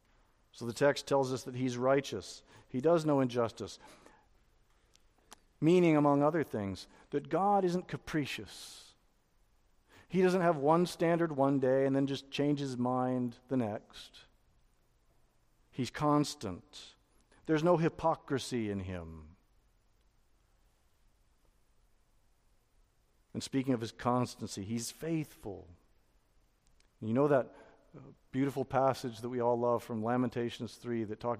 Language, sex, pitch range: English, male, 115-150 Hz